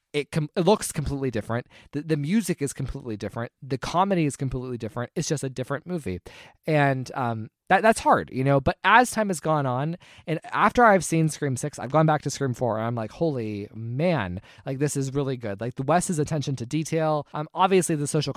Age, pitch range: 20-39, 115-155 Hz